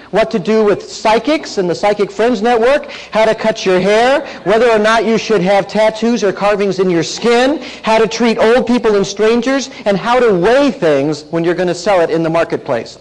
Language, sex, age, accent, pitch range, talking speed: English, male, 40-59, American, 140-215 Hz, 220 wpm